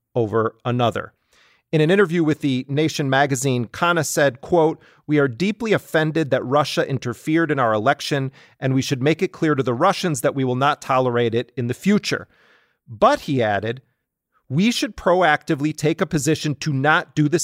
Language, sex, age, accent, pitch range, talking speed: English, male, 40-59, American, 125-155 Hz, 180 wpm